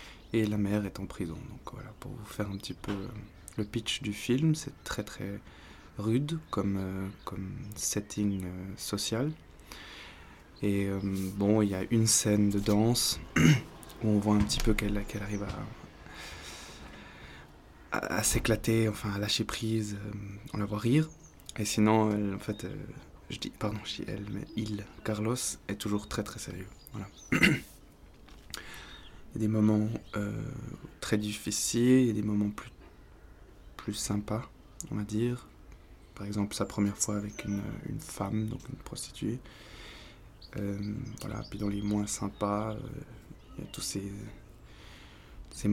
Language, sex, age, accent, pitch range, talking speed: French, male, 20-39, French, 100-110 Hz, 165 wpm